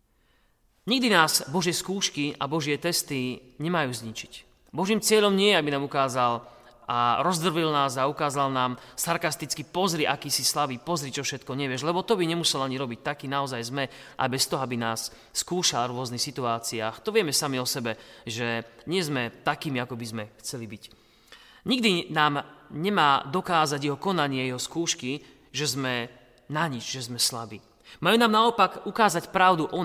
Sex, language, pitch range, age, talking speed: male, Slovak, 125-160 Hz, 30-49, 170 wpm